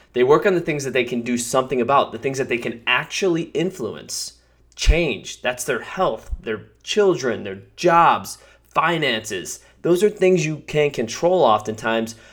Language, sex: English, male